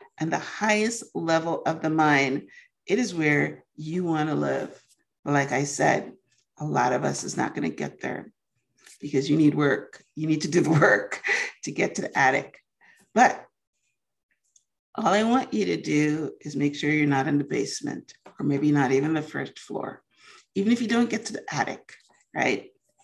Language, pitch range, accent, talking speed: English, 145-215 Hz, American, 195 wpm